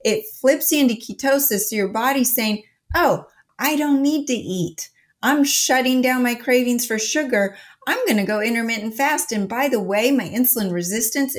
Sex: female